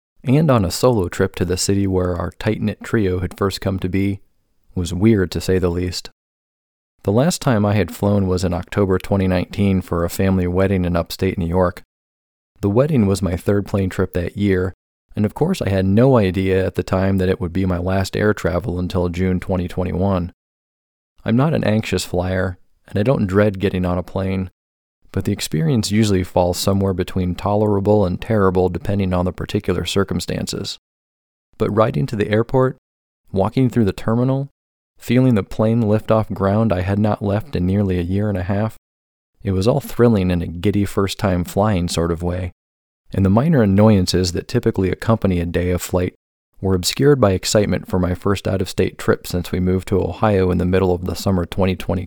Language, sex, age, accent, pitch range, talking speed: English, male, 40-59, American, 90-105 Hz, 195 wpm